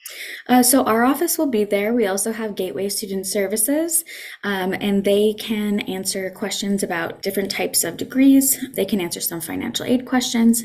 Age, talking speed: 20-39, 175 wpm